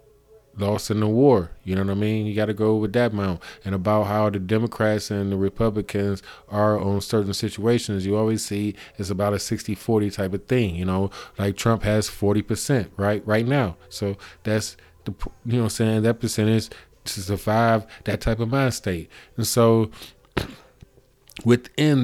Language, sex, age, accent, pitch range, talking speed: English, male, 20-39, American, 105-130 Hz, 175 wpm